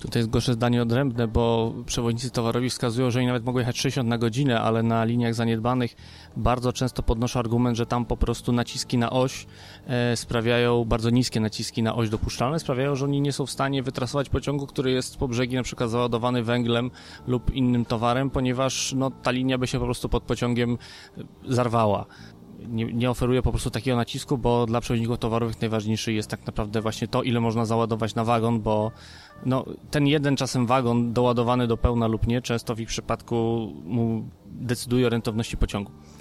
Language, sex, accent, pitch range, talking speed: Polish, male, native, 115-125 Hz, 185 wpm